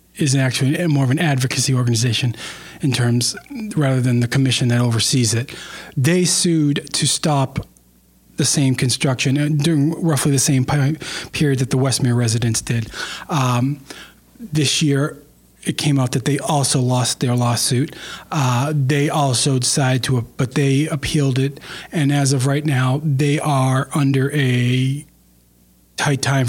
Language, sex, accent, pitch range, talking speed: English, male, American, 125-145 Hz, 145 wpm